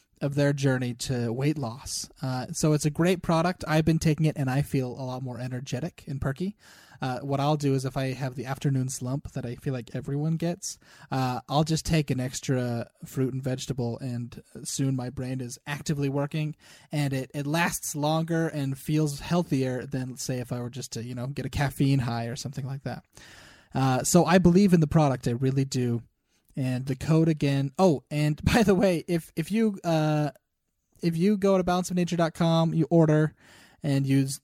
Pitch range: 130-155 Hz